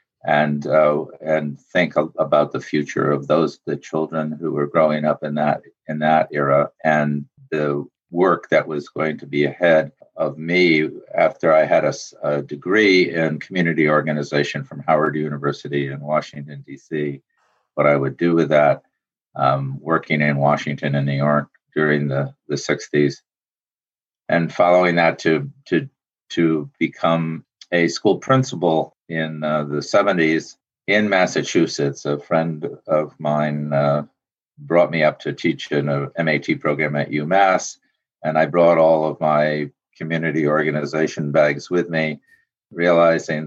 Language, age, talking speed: English, 50-69, 150 wpm